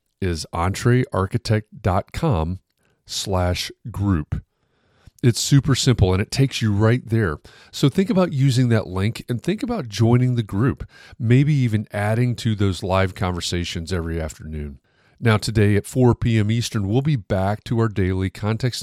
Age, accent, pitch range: 40-59, American, 95-125 Hz